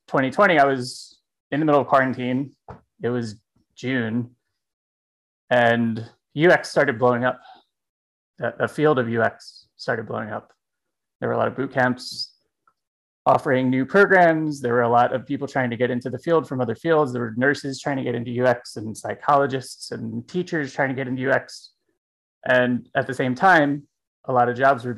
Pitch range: 120-135 Hz